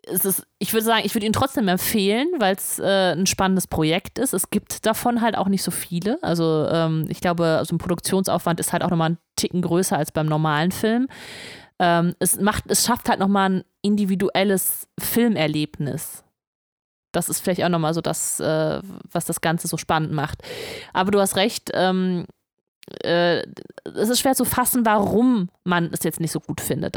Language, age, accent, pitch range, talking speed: German, 30-49, German, 165-205 Hz, 190 wpm